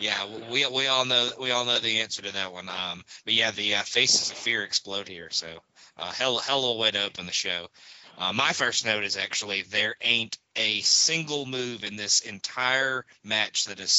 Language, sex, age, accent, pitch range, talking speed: English, male, 20-39, American, 95-115 Hz, 220 wpm